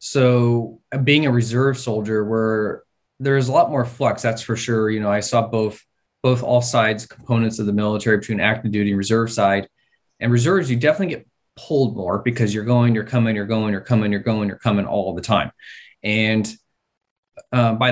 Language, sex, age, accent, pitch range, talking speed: English, male, 20-39, American, 110-125 Hz, 200 wpm